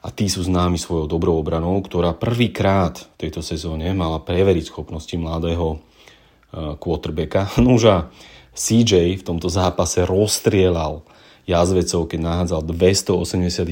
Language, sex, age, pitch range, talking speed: Slovak, male, 30-49, 85-95 Hz, 120 wpm